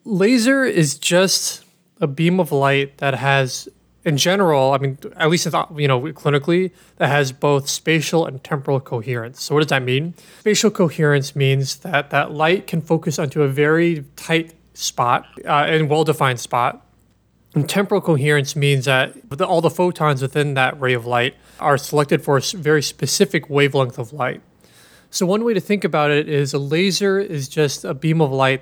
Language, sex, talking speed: English, male, 180 wpm